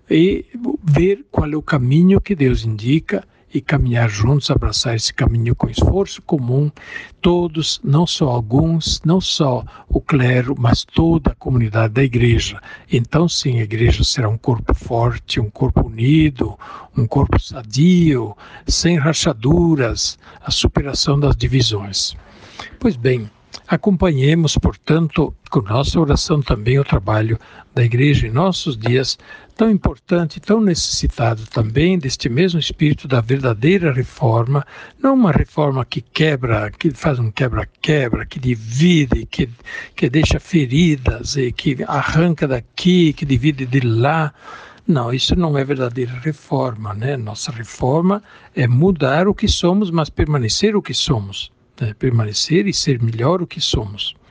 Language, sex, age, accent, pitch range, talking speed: Portuguese, male, 60-79, Brazilian, 120-160 Hz, 145 wpm